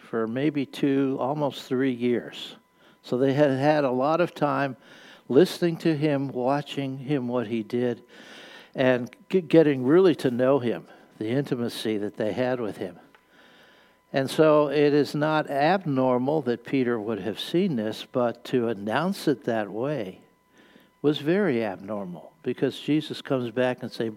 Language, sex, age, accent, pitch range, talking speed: English, male, 60-79, American, 115-150 Hz, 155 wpm